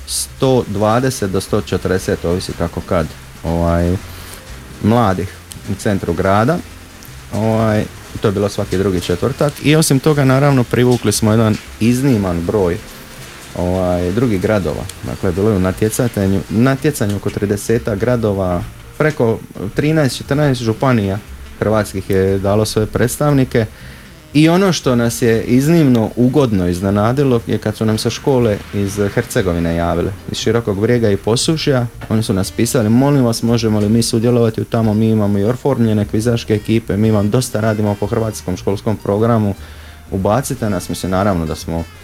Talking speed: 140 wpm